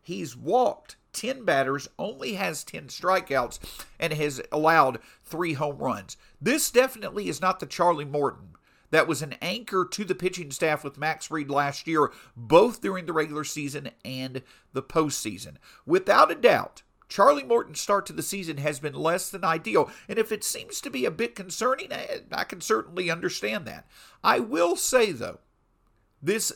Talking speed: 170 wpm